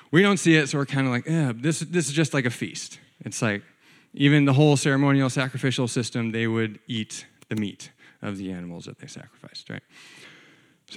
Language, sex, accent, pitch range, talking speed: English, male, American, 125-160 Hz, 210 wpm